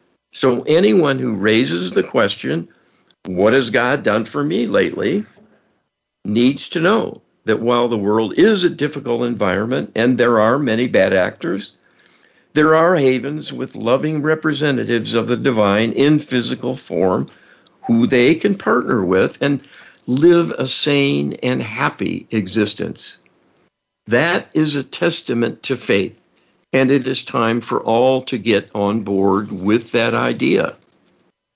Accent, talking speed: American, 140 wpm